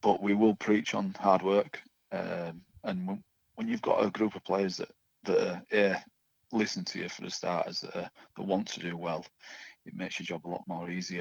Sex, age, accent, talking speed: male, 40-59, British, 225 wpm